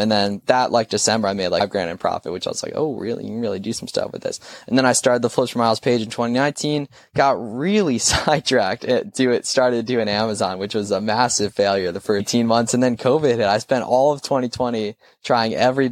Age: 10-29